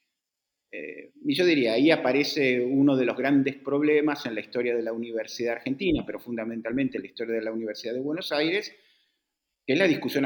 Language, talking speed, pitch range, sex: Spanish, 195 wpm, 115-175 Hz, male